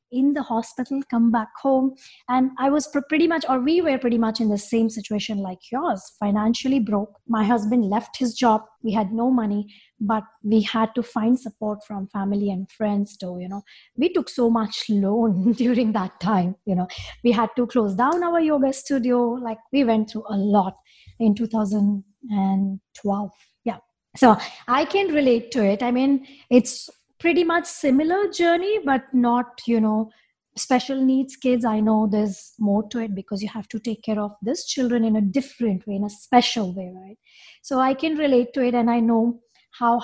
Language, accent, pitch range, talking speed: English, Indian, 210-265 Hz, 190 wpm